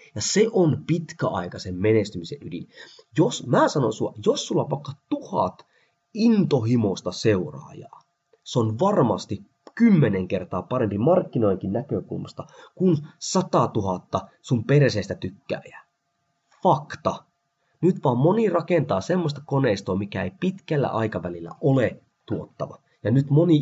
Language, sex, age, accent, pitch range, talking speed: Finnish, male, 30-49, native, 110-170 Hz, 120 wpm